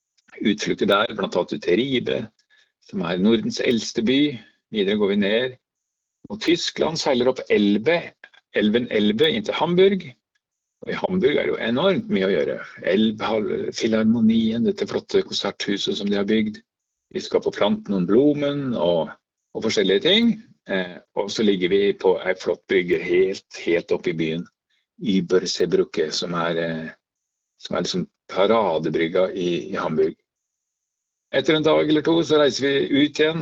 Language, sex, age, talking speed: English, male, 50-69, 160 wpm